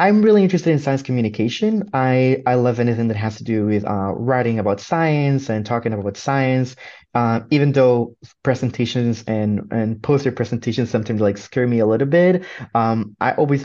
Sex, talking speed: male, 180 wpm